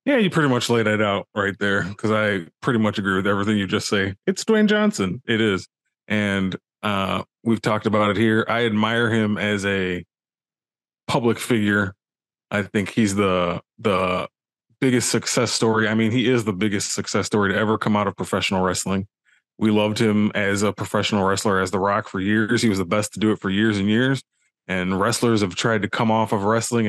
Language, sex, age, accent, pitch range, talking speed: English, male, 20-39, American, 100-115 Hz, 210 wpm